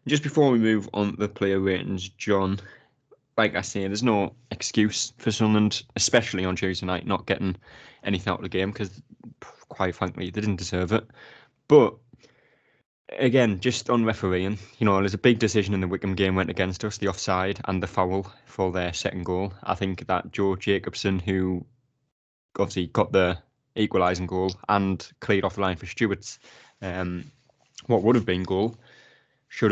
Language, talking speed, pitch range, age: English, 180 wpm, 95-110 Hz, 20-39